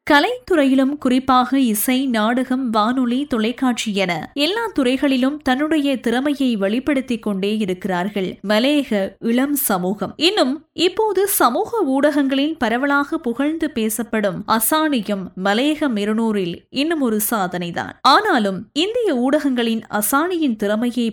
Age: 20-39